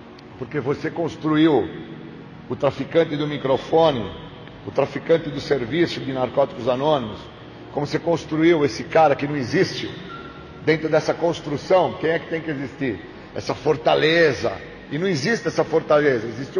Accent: Brazilian